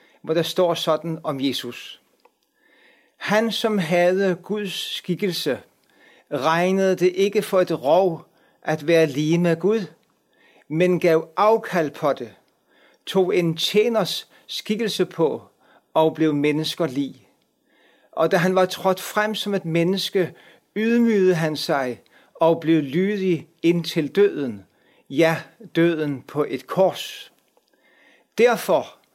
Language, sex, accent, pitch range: Danish, male, native, 155-200 Hz